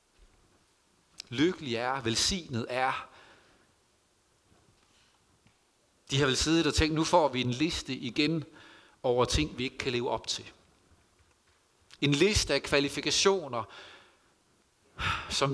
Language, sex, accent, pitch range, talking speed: Danish, male, native, 125-175 Hz, 110 wpm